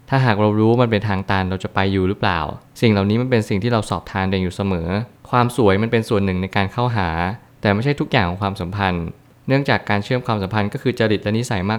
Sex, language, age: male, Thai, 20-39